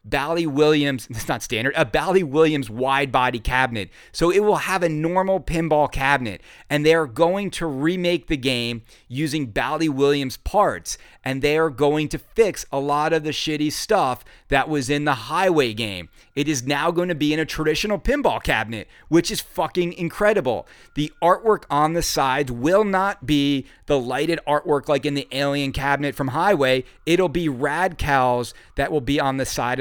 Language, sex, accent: English, male, American